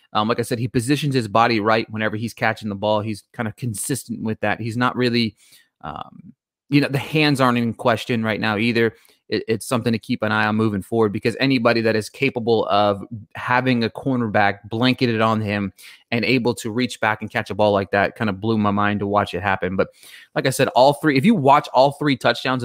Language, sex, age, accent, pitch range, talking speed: English, male, 30-49, American, 110-135 Hz, 230 wpm